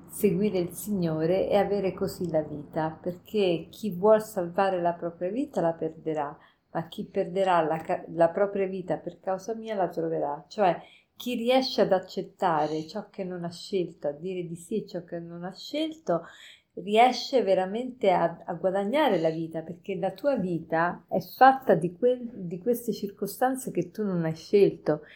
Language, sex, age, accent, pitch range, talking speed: Italian, female, 50-69, native, 170-205 Hz, 165 wpm